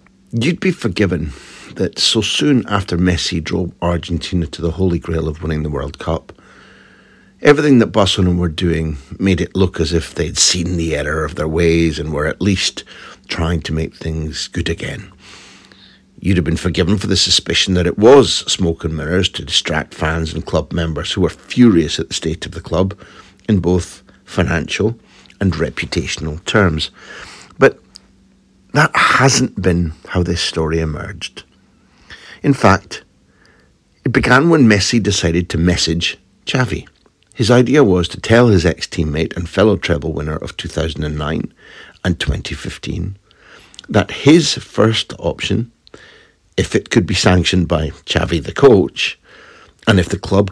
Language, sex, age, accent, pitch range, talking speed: English, male, 60-79, British, 80-100 Hz, 155 wpm